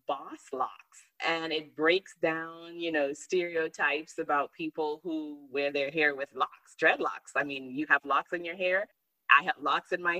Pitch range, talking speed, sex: 145-180 Hz, 180 wpm, female